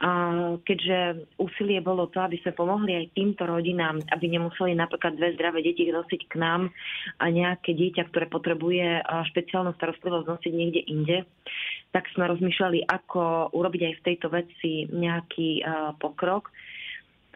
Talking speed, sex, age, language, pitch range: 140 wpm, female, 20-39, Slovak, 165-180 Hz